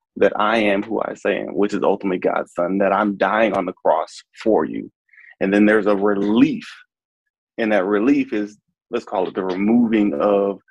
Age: 20-39